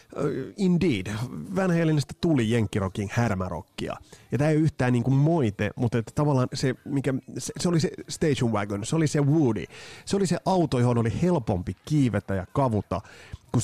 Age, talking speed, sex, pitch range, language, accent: 30-49, 165 wpm, male, 105-140 Hz, Finnish, native